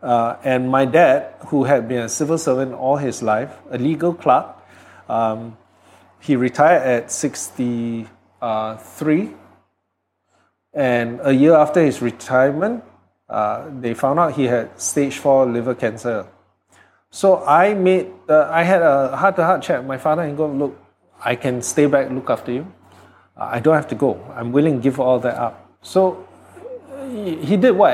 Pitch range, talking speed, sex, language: 115-150 Hz, 160 wpm, male, English